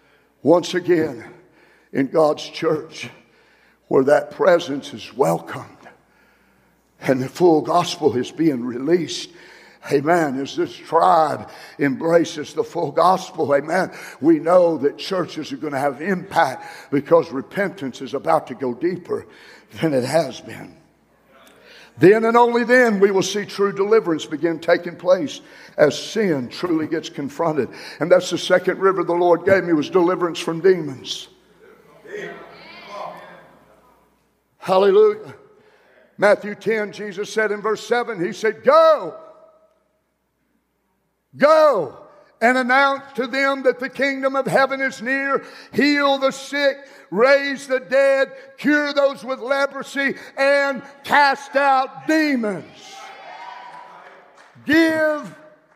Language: English